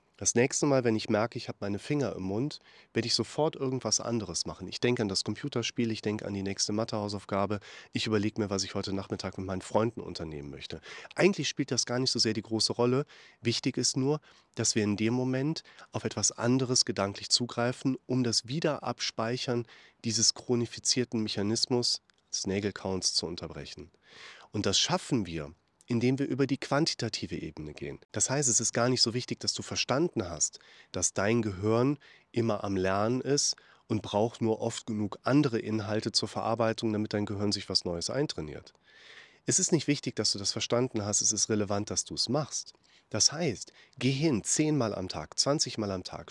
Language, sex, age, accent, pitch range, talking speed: German, male, 30-49, German, 105-125 Hz, 190 wpm